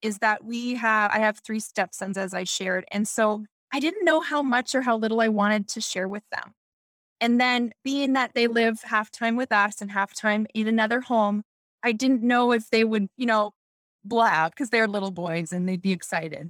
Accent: American